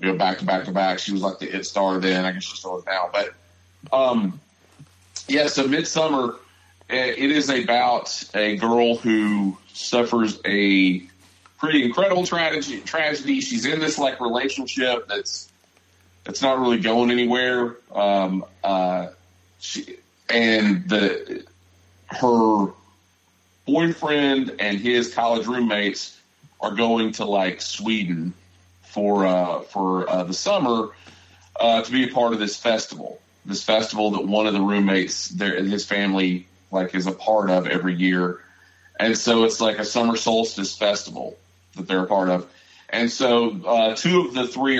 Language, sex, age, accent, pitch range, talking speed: English, male, 40-59, American, 95-120 Hz, 155 wpm